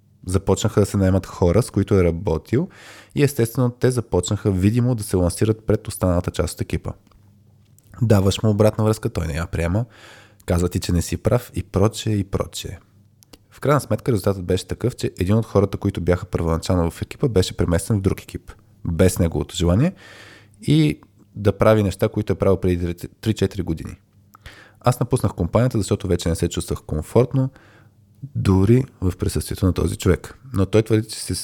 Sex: male